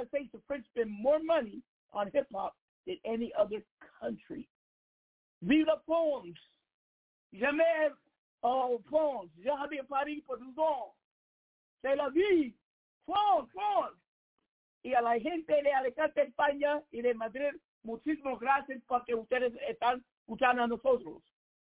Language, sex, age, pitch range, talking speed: English, male, 60-79, 255-345 Hz, 125 wpm